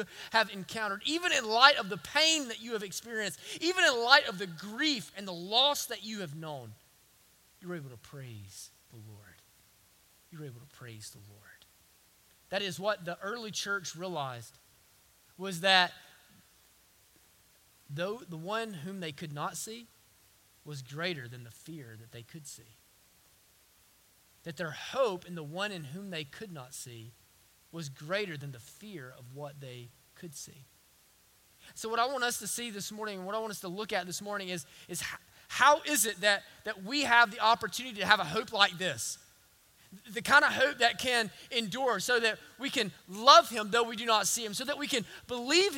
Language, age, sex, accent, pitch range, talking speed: English, 30-49, male, American, 150-230 Hz, 195 wpm